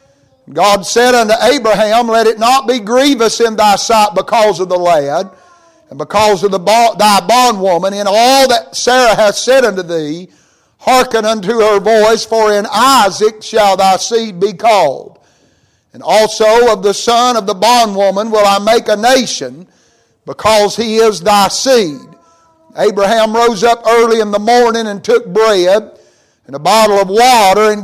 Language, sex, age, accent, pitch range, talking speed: English, male, 50-69, American, 210-240 Hz, 160 wpm